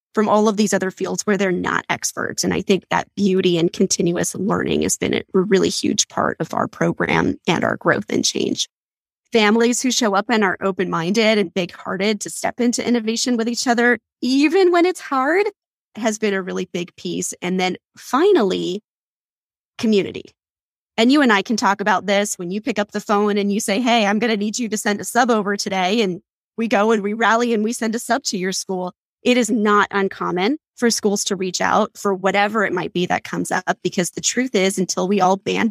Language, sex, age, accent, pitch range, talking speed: English, female, 20-39, American, 190-230 Hz, 215 wpm